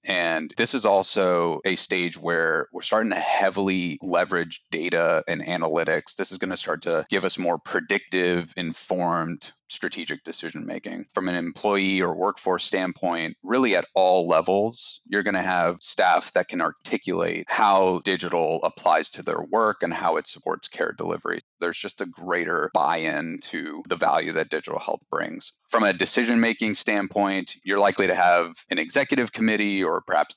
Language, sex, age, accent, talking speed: English, male, 30-49, American, 165 wpm